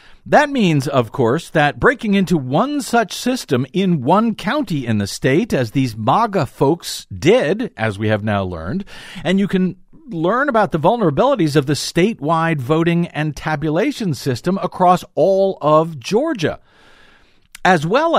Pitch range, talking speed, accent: 135-190 Hz, 150 wpm, American